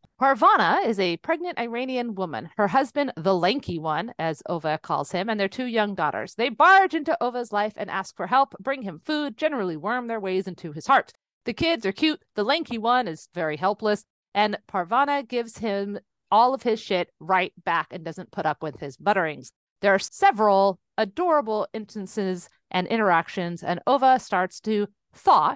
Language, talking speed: English, 185 wpm